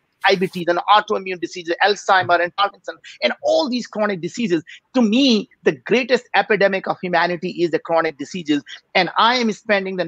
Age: 50-69